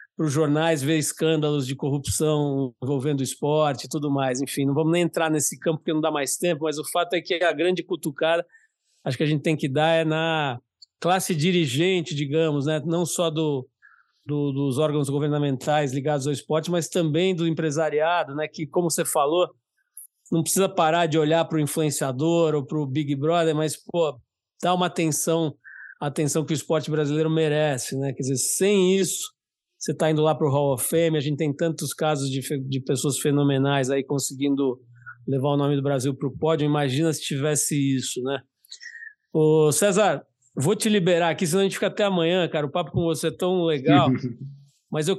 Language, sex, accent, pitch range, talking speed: Portuguese, male, Brazilian, 145-175 Hz, 195 wpm